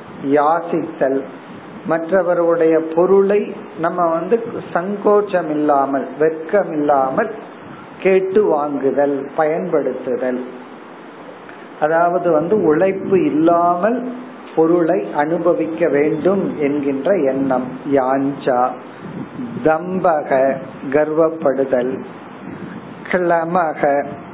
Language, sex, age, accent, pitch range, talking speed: Tamil, male, 50-69, native, 150-195 Hz, 50 wpm